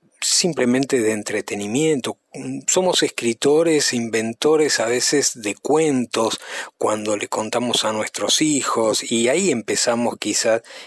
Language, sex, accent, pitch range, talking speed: Spanish, male, Argentinian, 110-135 Hz, 110 wpm